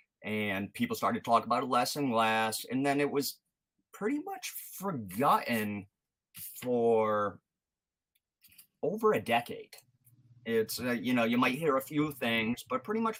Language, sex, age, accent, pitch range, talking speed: English, male, 30-49, American, 110-145 Hz, 150 wpm